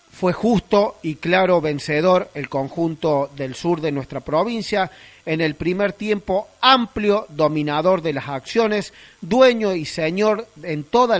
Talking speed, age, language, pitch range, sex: 140 wpm, 40-59, Spanish, 150-200 Hz, male